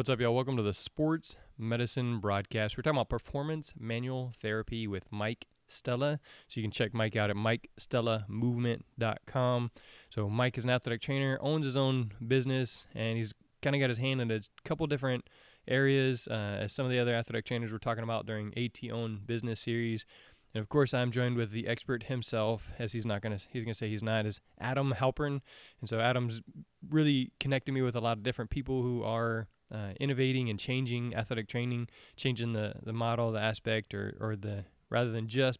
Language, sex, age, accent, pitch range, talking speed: English, male, 20-39, American, 110-130 Hz, 200 wpm